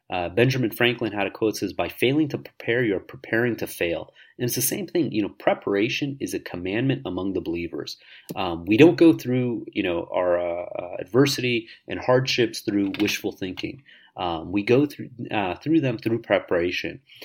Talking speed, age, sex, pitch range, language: 190 wpm, 30-49, male, 105-145 Hz, English